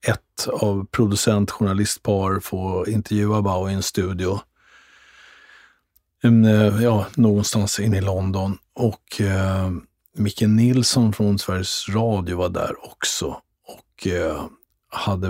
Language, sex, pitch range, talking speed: Swedish, male, 100-110 Hz, 110 wpm